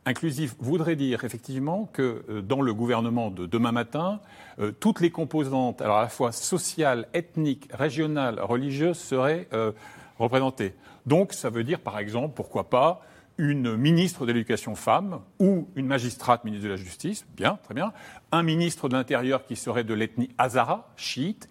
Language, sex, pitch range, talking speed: French, male, 115-165 Hz, 165 wpm